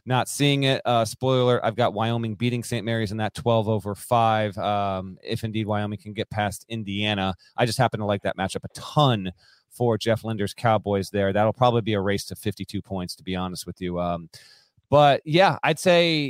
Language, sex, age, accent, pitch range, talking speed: English, male, 30-49, American, 100-130 Hz, 210 wpm